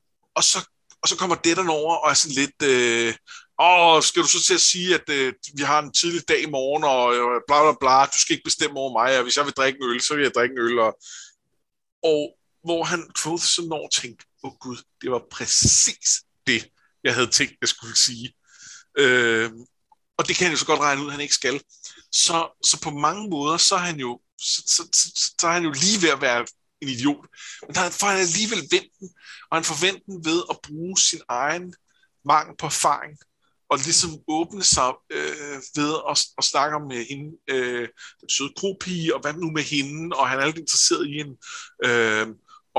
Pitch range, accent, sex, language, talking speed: 135-175 Hz, native, male, Danish, 220 wpm